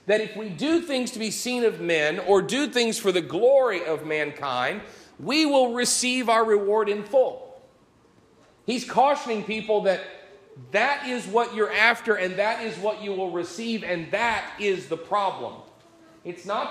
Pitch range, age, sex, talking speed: 170-240 Hz, 40-59, male, 170 wpm